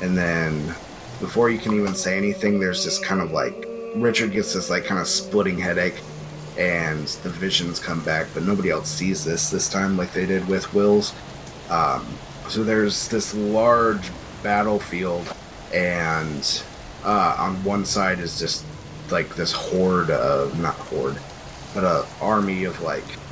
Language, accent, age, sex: English, American, 30-49, male